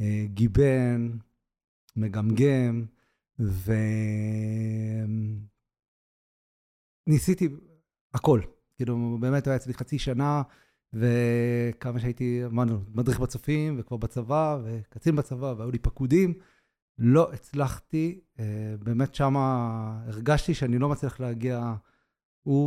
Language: Hebrew